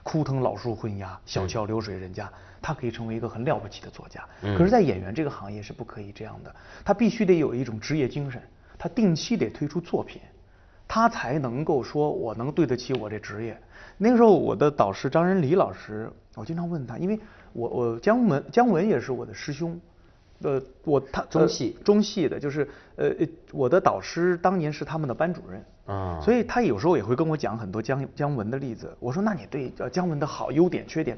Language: Chinese